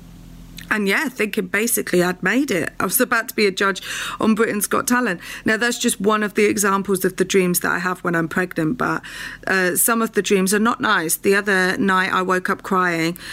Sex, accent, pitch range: female, British, 180-210 Hz